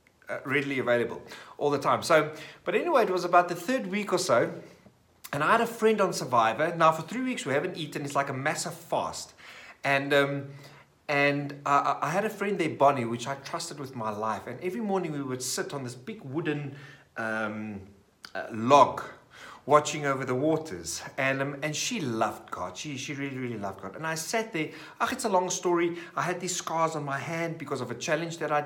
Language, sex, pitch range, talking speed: English, male, 130-175 Hz, 215 wpm